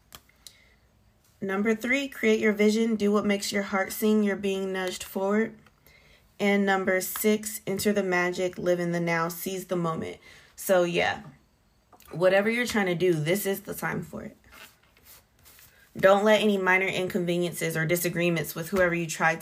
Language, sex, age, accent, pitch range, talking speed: English, female, 20-39, American, 165-205 Hz, 160 wpm